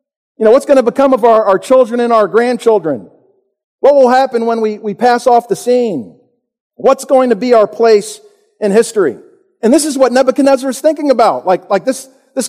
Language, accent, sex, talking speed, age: English, American, male, 205 wpm, 50-69